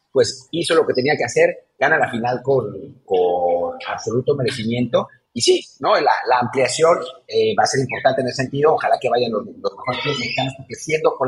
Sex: male